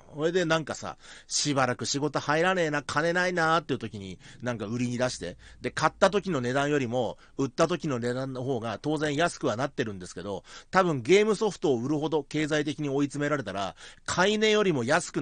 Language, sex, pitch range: Japanese, male, 125-190 Hz